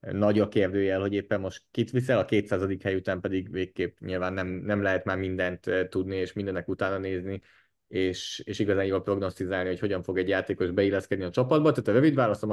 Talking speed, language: 200 wpm, Hungarian